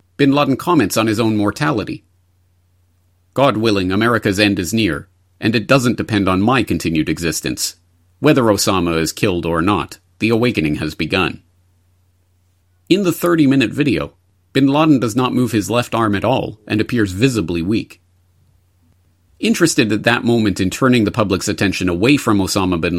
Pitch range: 90-115 Hz